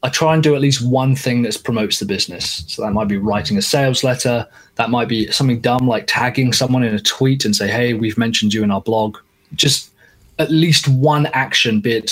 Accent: British